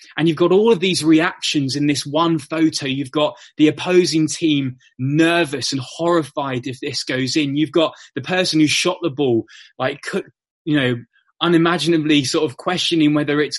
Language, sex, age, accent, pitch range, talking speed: English, male, 20-39, British, 140-170 Hz, 175 wpm